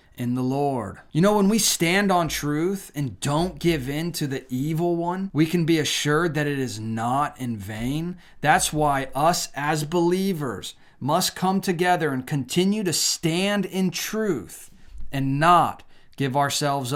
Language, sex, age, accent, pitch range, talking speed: English, male, 30-49, American, 135-185 Hz, 165 wpm